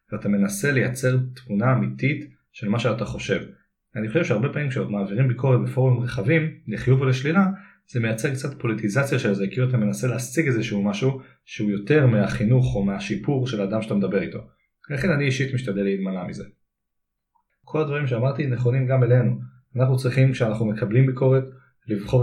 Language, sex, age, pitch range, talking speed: Hebrew, male, 30-49, 105-130 Hz, 165 wpm